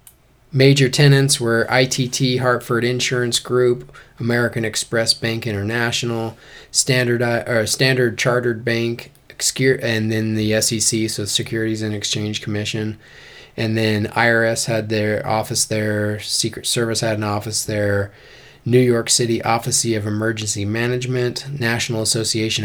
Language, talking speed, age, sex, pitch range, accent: English, 125 wpm, 20-39, male, 110-125 Hz, American